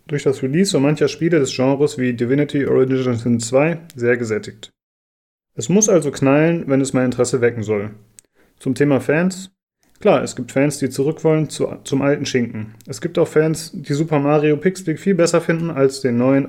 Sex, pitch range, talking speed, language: male, 125-155 Hz, 195 wpm, German